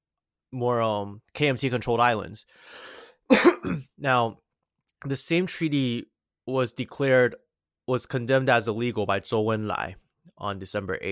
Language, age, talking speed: English, 20-39, 115 wpm